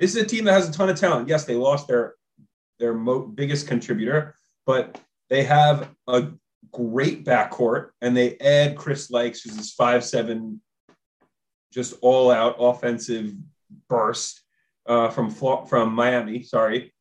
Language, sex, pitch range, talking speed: English, male, 115-140 Hz, 150 wpm